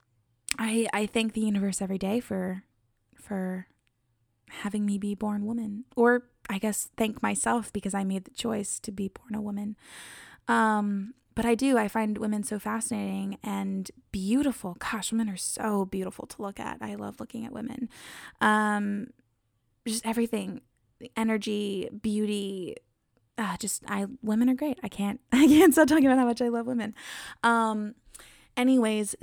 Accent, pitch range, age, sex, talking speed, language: American, 200-235 Hz, 20-39, female, 160 wpm, English